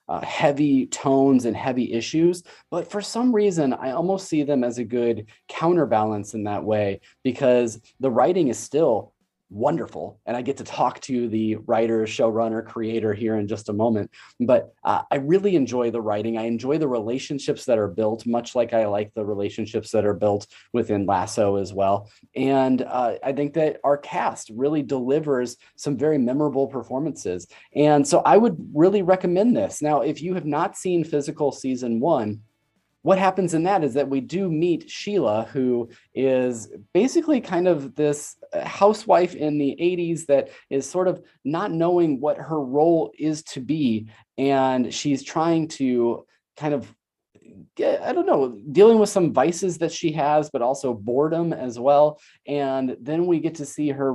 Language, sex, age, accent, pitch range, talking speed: English, male, 30-49, American, 115-155 Hz, 175 wpm